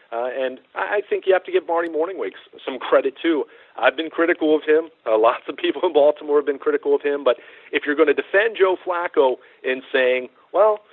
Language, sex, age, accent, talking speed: English, male, 40-59, American, 220 wpm